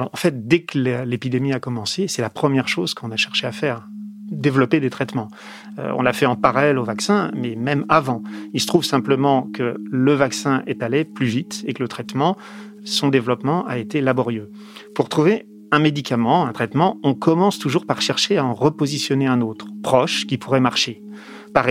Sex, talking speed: male, 195 wpm